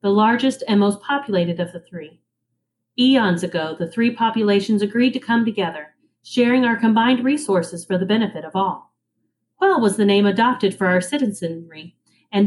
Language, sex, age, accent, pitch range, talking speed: English, female, 30-49, American, 185-255 Hz, 170 wpm